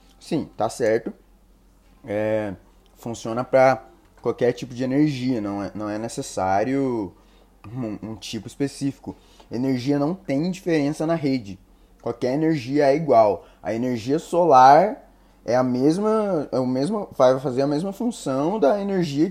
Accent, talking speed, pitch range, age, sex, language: Brazilian, 140 wpm, 110-150 Hz, 20-39, male, Portuguese